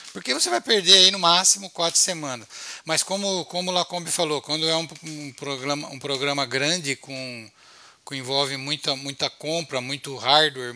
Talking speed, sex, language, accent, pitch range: 165 wpm, male, Portuguese, Brazilian, 140-185 Hz